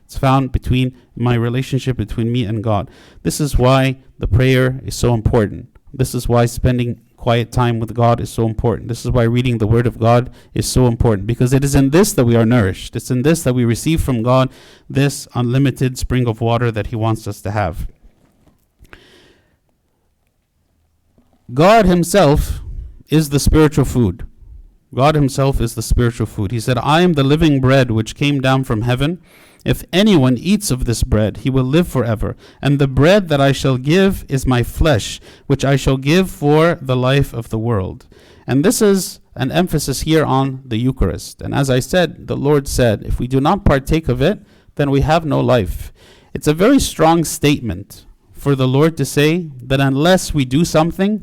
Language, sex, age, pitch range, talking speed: English, male, 50-69, 115-145 Hz, 190 wpm